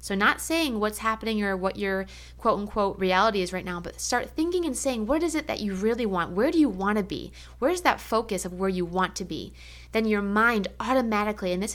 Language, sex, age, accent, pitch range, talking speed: English, female, 20-39, American, 185-225 Hz, 235 wpm